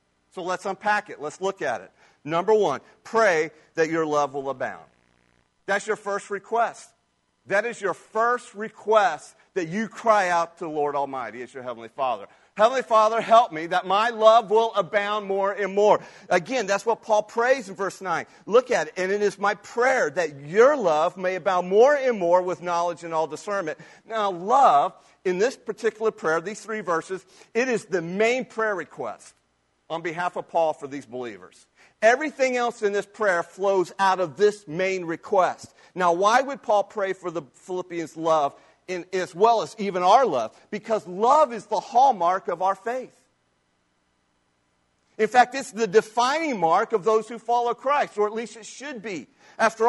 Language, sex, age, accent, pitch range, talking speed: English, male, 40-59, American, 165-220 Hz, 185 wpm